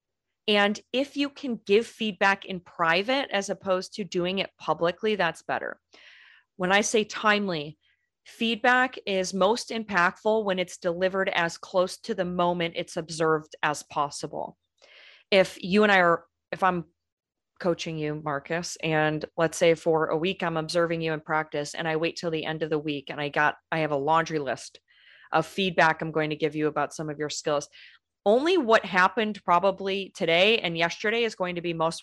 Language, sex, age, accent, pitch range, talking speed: English, female, 30-49, American, 160-195 Hz, 185 wpm